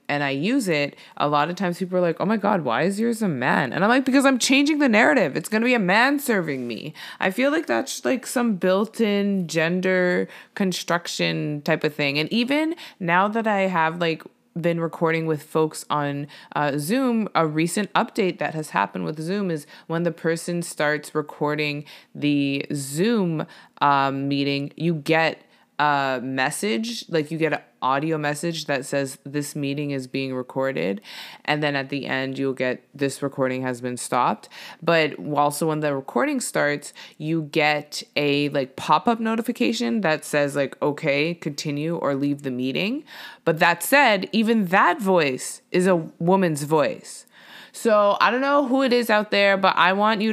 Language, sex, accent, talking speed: English, female, American, 180 wpm